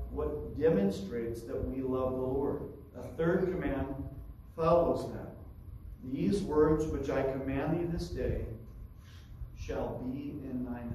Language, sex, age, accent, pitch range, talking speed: English, male, 50-69, American, 105-160 Hz, 130 wpm